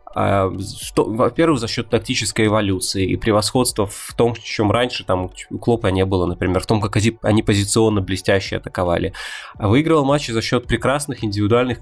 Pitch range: 105-130 Hz